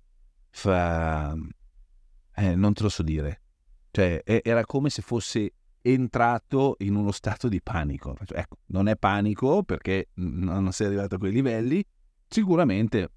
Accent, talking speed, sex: native, 135 wpm, male